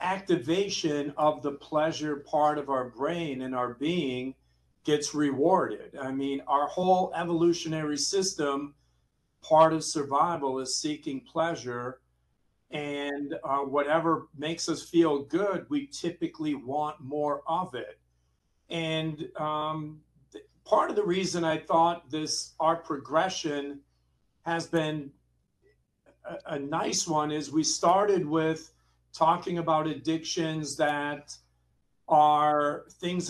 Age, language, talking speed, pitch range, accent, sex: 50-69, English, 115 wpm, 140-165 Hz, American, male